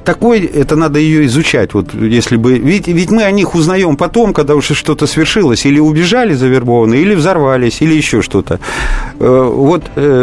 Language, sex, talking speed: Russian, male, 165 wpm